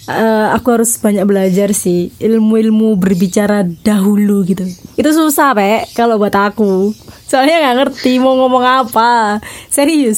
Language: Indonesian